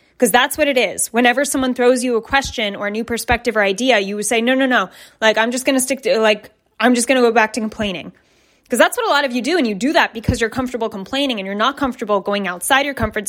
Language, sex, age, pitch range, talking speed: English, female, 20-39, 210-270 Hz, 285 wpm